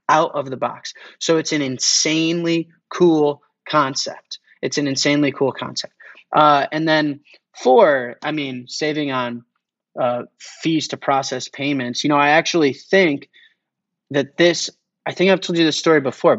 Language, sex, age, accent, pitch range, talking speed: English, male, 30-49, American, 130-175 Hz, 160 wpm